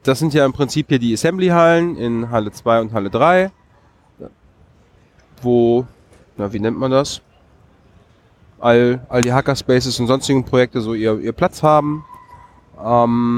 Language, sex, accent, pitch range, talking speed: German, male, German, 110-135 Hz, 150 wpm